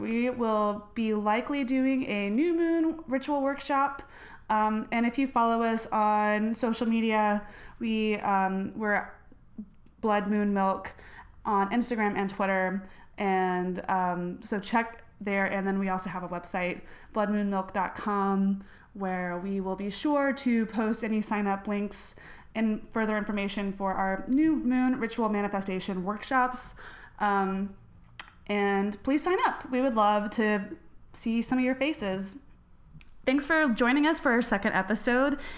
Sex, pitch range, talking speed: female, 195-260 Hz, 145 wpm